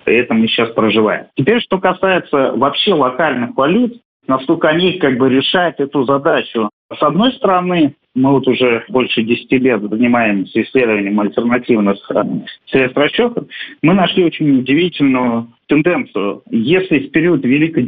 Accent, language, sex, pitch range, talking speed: native, Russian, male, 120-165 Hz, 140 wpm